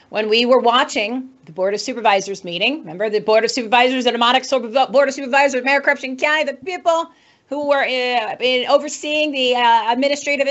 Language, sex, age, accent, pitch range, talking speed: English, female, 40-59, American, 210-285 Hz, 170 wpm